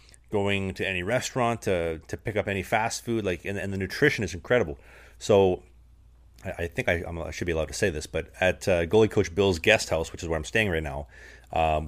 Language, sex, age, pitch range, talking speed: English, male, 30-49, 80-100 Hz, 235 wpm